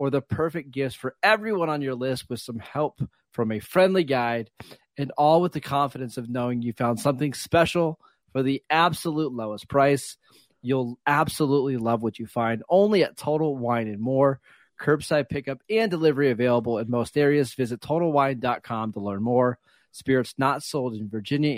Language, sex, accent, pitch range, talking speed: English, male, American, 120-150 Hz, 170 wpm